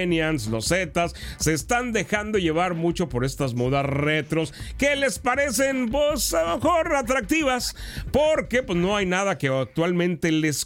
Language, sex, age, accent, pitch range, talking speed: Spanish, male, 40-59, Mexican, 140-210 Hz, 150 wpm